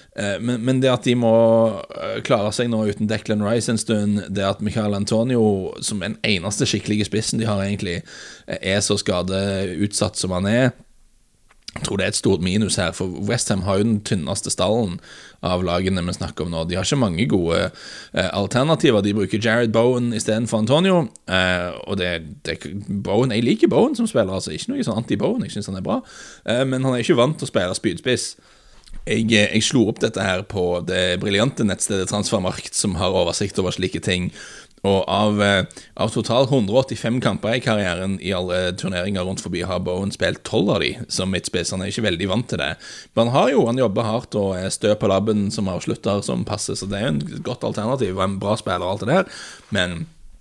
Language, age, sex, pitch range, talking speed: English, 20-39, male, 95-115 Hz, 205 wpm